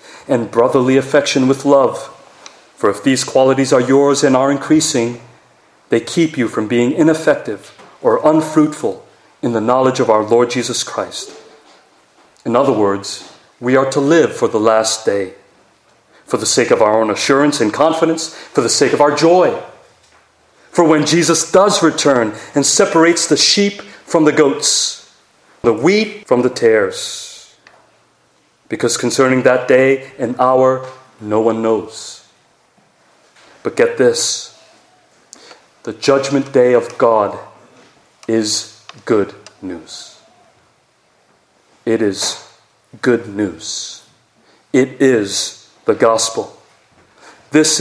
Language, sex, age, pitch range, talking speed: English, male, 40-59, 120-155 Hz, 130 wpm